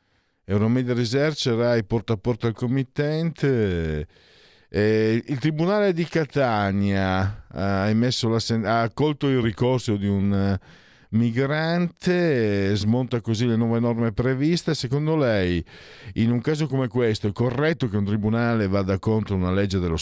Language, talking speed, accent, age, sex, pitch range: Italian, 140 wpm, native, 50-69, male, 85-120 Hz